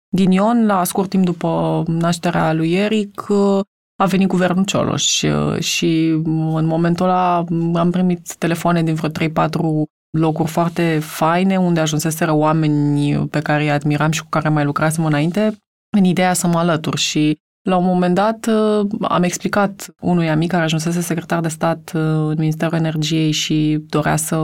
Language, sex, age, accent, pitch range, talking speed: Romanian, female, 20-39, native, 155-185 Hz, 155 wpm